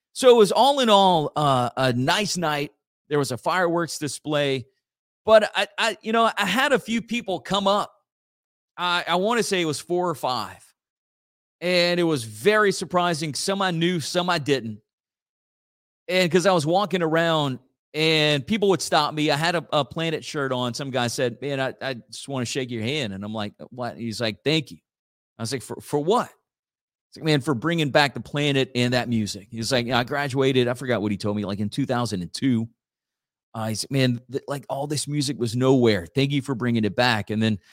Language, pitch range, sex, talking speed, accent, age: English, 120-160 Hz, male, 215 wpm, American, 40-59